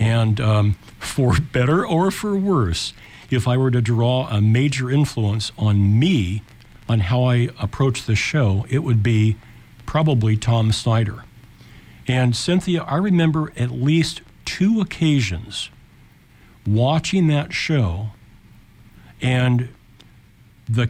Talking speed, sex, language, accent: 120 wpm, male, English, American